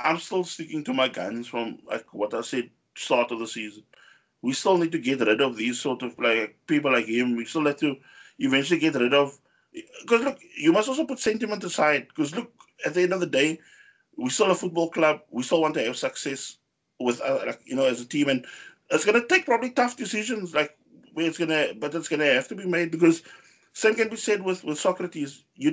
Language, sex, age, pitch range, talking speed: English, male, 20-39, 130-210 Hz, 240 wpm